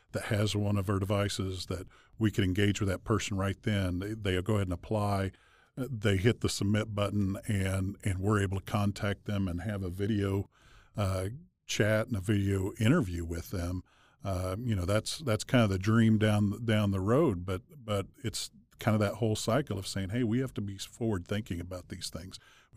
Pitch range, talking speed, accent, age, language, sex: 95-115 Hz, 205 wpm, American, 50-69, English, male